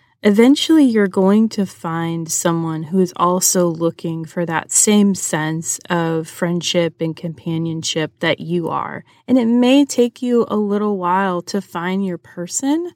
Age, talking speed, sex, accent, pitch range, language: 30-49, 155 wpm, female, American, 170-200 Hz, English